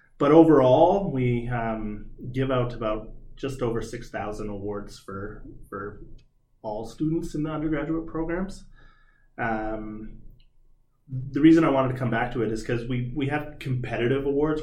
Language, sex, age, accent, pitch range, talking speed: English, male, 30-49, American, 110-130 Hz, 150 wpm